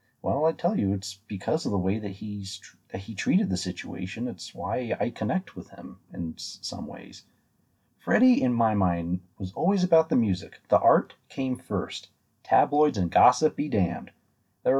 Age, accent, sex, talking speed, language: 30-49, American, male, 185 wpm, English